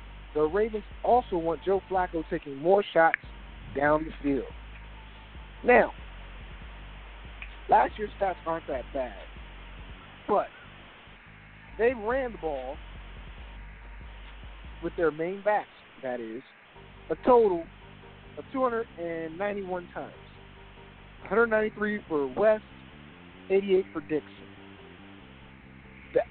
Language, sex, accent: English, male, American